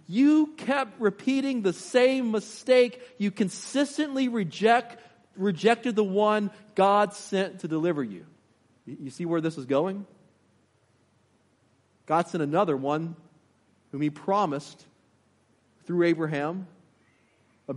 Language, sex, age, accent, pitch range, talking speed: English, male, 40-59, American, 170-215 Hz, 110 wpm